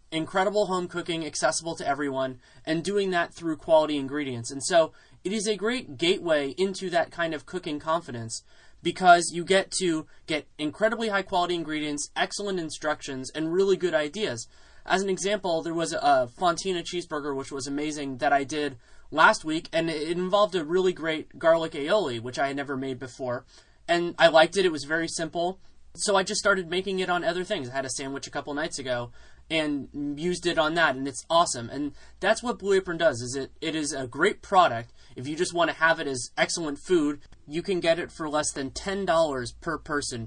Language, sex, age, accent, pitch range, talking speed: English, male, 20-39, American, 145-185 Hz, 205 wpm